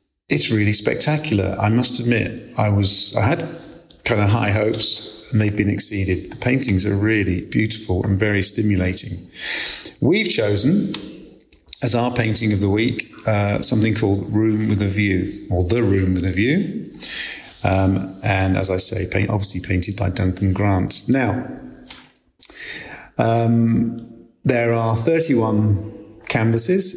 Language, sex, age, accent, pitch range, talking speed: English, male, 40-59, British, 95-115 Hz, 140 wpm